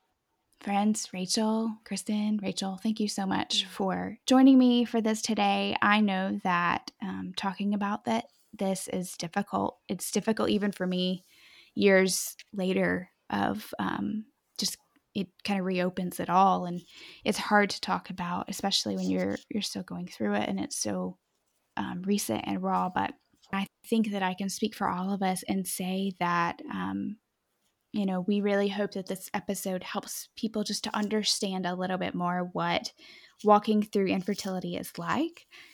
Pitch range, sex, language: 185-215 Hz, female, English